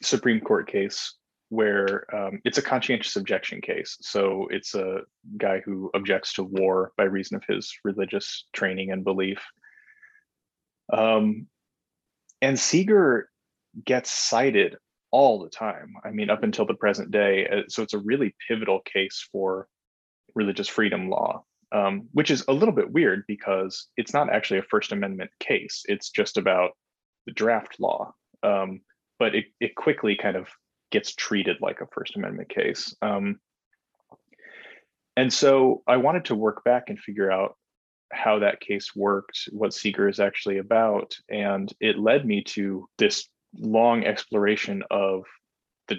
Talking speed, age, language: 150 wpm, 20-39, English